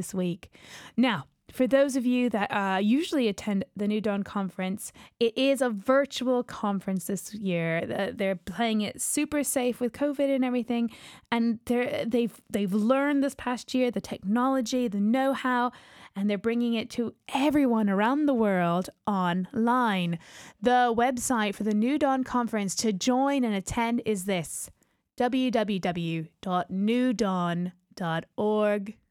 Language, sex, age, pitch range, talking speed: English, female, 10-29, 195-255 Hz, 135 wpm